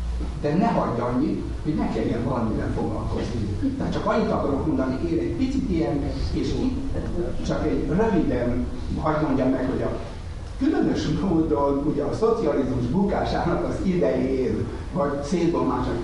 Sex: male